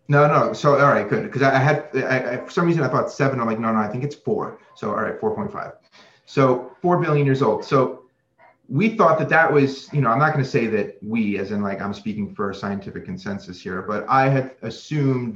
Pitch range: 110-140 Hz